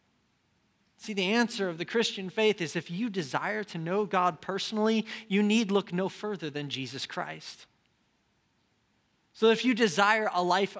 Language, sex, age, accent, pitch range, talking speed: English, male, 20-39, American, 180-225 Hz, 160 wpm